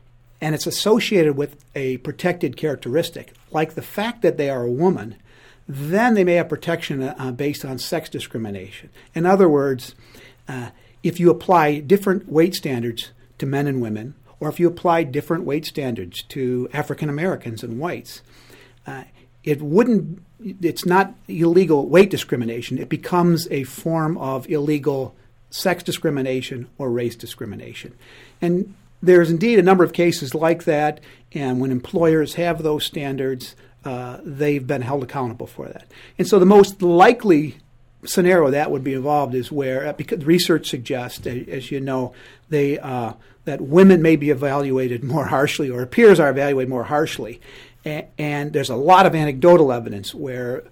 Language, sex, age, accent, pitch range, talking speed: English, male, 50-69, American, 130-170 Hz, 155 wpm